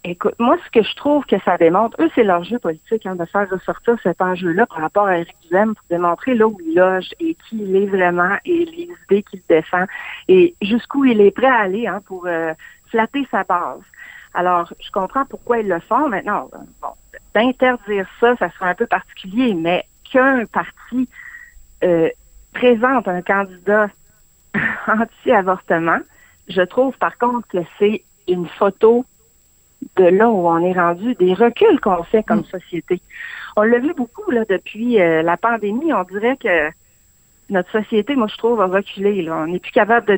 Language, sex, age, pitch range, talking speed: French, female, 60-79, 180-245 Hz, 180 wpm